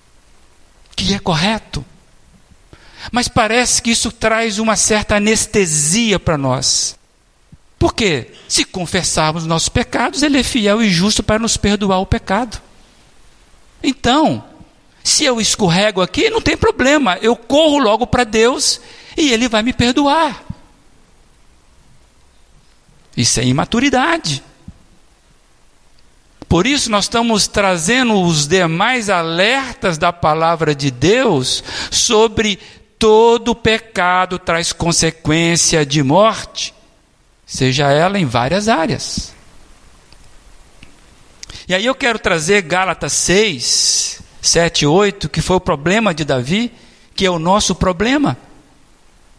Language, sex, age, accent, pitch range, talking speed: Portuguese, male, 50-69, Brazilian, 165-225 Hz, 115 wpm